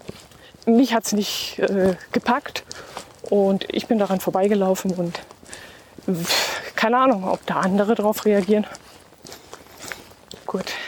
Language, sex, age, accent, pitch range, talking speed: German, female, 20-39, German, 195-240 Hz, 105 wpm